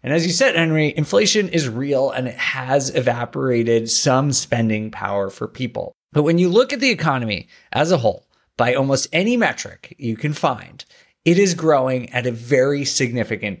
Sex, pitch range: male, 120-175 Hz